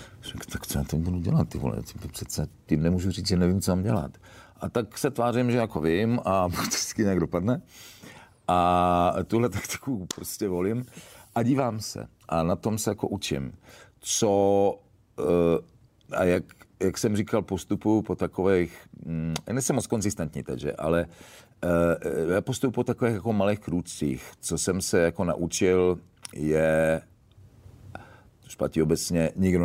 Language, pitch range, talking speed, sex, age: Czech, 80-105 Hz, 140 wpm, male, 50-69